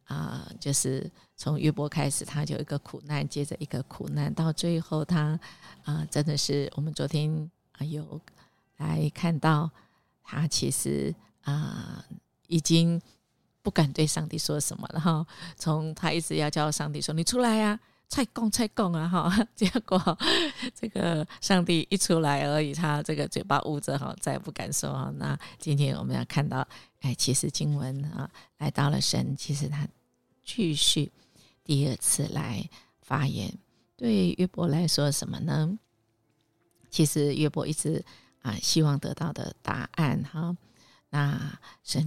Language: Chinese